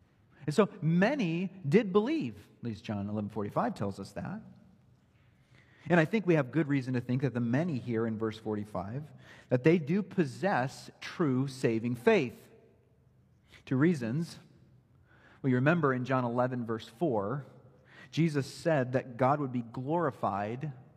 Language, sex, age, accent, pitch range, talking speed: English, male, 40-59, American, 115-155 Hz, 155 wpm